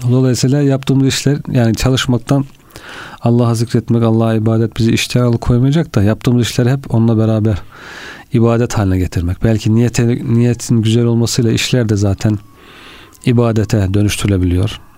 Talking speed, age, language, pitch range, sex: 125 wpm, 40-59, Turkish, 110-130 Hz, male